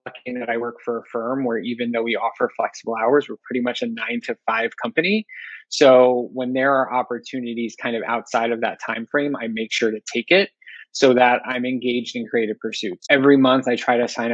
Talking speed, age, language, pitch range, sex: 220 wpm, 20-39, English, 115-135 Hz, male